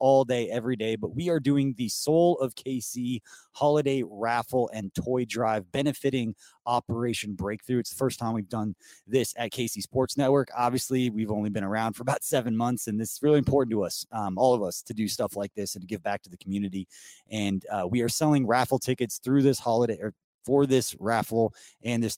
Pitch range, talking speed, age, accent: 105-130 Hz, 215 wpm, 20-39, American